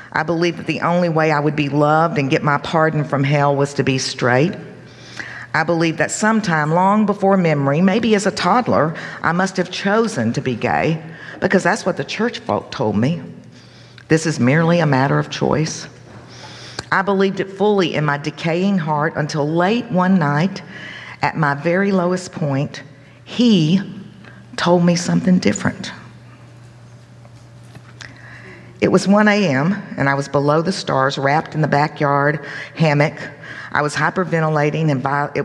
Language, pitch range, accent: English, 145-195 Hz, American